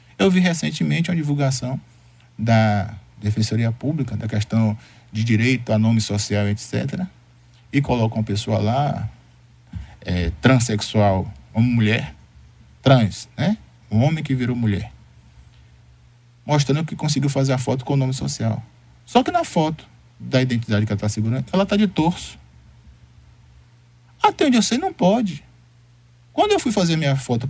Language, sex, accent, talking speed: Portuguese, male, Brazilian, 145 wpm